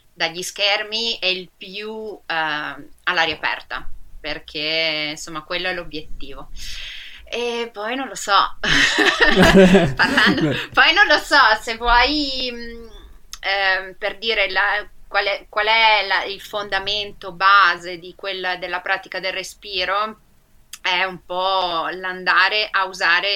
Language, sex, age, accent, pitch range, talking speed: Italian, female, 20-39, native, 180-210 Hz, 130 wpm